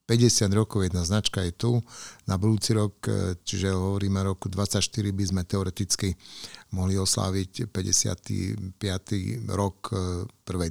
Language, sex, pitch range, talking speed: Slovak, male, 95-115 Hz, 120 wpm